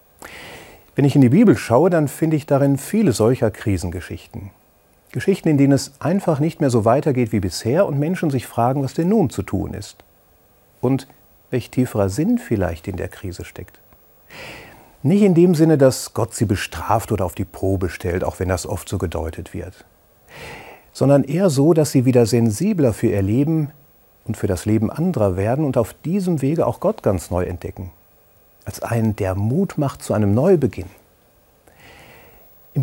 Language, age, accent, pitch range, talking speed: German, 40-59, German, 100-150 Hz, 175 wpm